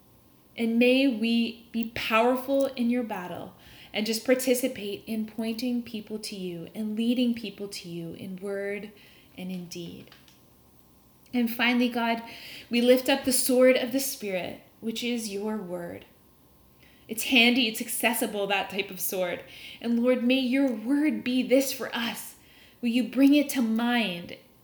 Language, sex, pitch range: English, female, 200-245 Hz